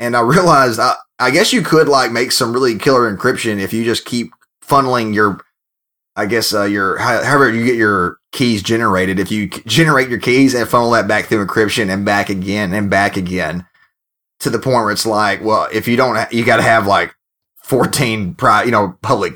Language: English